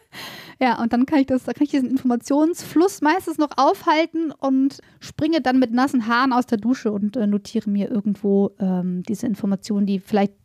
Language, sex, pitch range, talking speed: German, female, 205-250 Hz, 190 wpm